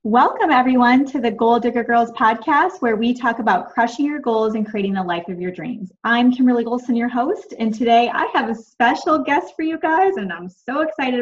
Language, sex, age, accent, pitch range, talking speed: English, female, 20-39, American, 190-240 Hz, 220 wpm